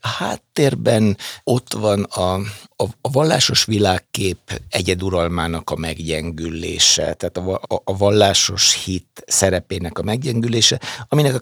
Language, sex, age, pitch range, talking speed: Hungarian, male, 60-79, 95-110 Hz, 120 wpm